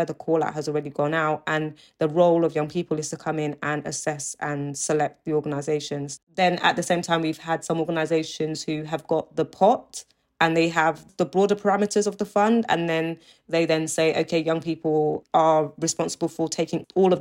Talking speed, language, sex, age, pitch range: 210 wpm, English, female, 20-39, 155-170 Hz